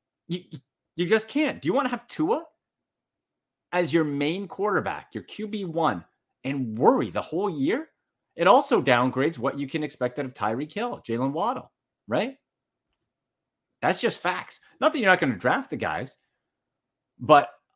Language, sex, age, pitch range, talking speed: English, male, 30-49, 120-150 Hz, 165 wpm